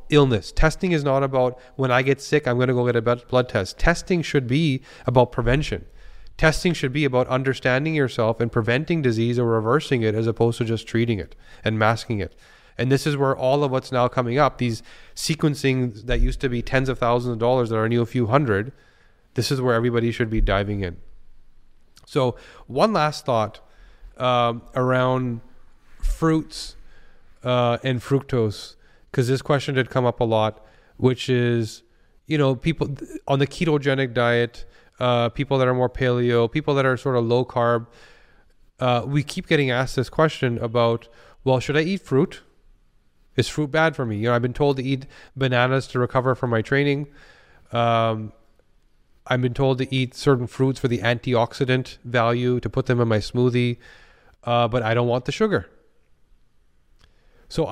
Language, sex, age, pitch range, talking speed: English, male, 30-49, 115-135 Hz, 180 wpm